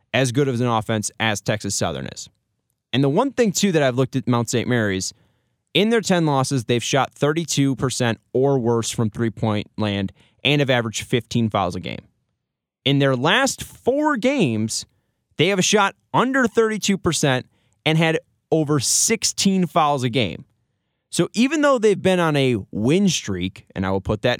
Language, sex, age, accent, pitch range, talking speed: English, male, 20-39, American, 115-160 Hz, 175 wpm